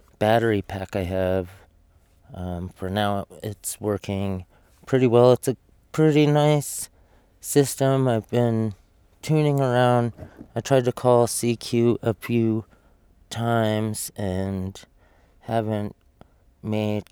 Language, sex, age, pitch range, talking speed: English, male, 30-49, 95-125 Hz, 110 wpm